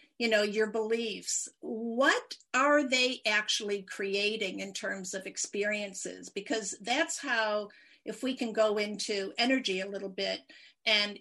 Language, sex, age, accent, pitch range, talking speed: English, female, 50-69, American, 205-250 Hz, 140 wpm